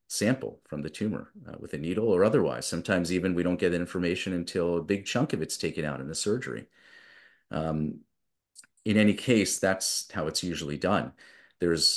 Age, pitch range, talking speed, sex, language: 40-59, 80-95 Hz, 185 wpm, male, English